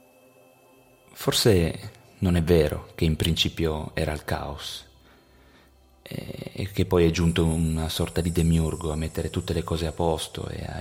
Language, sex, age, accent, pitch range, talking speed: Italian, male, 30-49, native, 80-100 Hz, 155 wpm